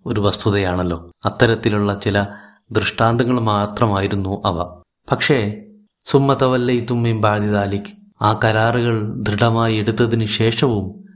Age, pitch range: 30-49, 100-120 Hz